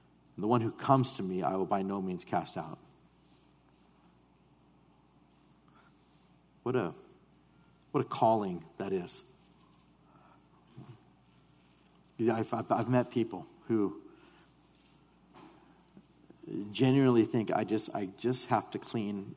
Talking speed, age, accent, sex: 100 wpm, 50-69, American, male